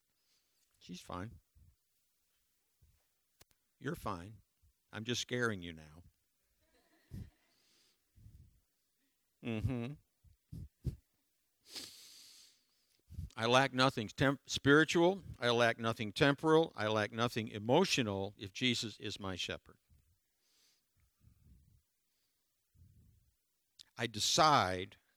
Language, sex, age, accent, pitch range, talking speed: English, male, 60-79, American, 100-135 Hz, 70 wpm